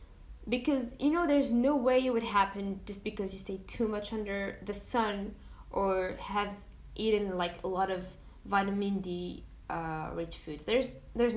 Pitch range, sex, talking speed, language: 195-275 Hz, female, 165 wpm, English